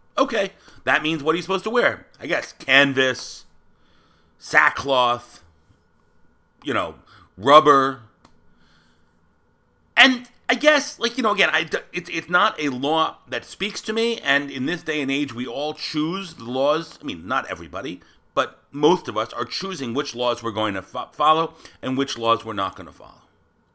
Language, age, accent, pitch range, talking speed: English, 40-59, American, 115-175 Hz, 175 wpm